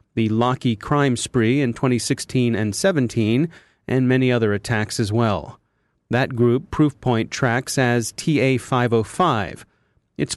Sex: male